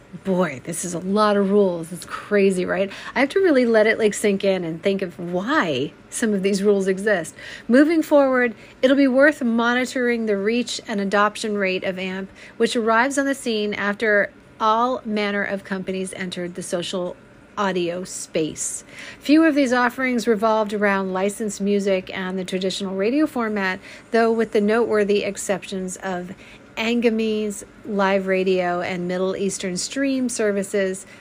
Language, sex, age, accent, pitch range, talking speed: English, female, 40-59, American, 190-235 Hz, 160 wpm